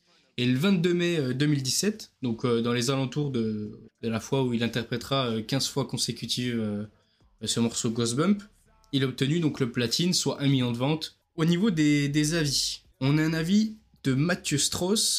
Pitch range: 120-160 Hz